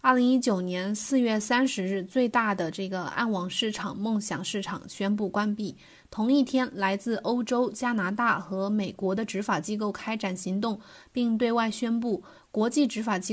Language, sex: Chinese, female